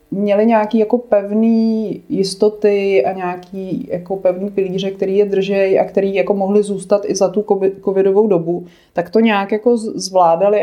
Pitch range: 185-210 Hz